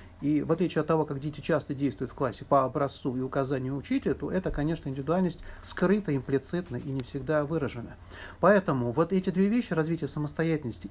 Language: Russian